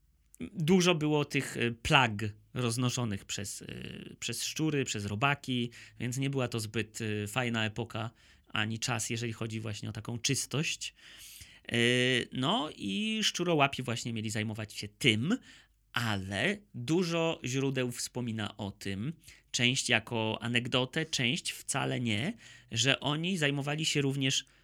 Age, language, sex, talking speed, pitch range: 30-49, Polish, male, 120 wpm, 115-150 Hz